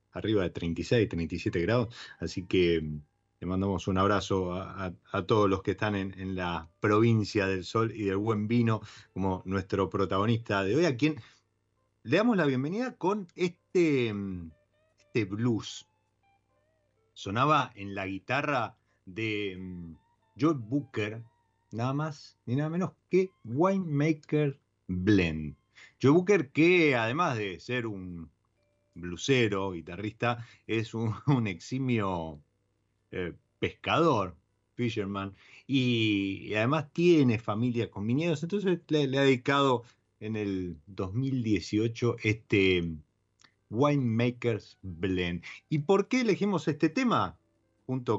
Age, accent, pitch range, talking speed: 30-49, Argentinian, 100-130 Hz, 125 wpm